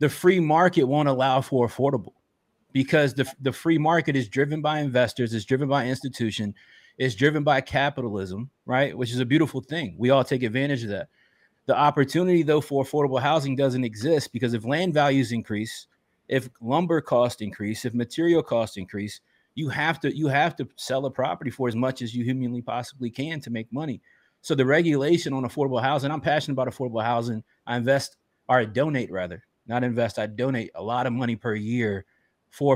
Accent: American